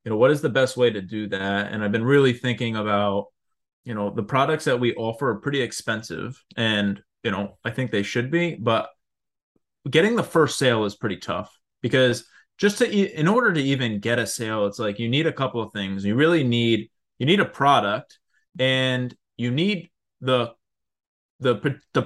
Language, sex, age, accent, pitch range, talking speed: English, male, 20-39, American, 110-135 Hz, 200 wpm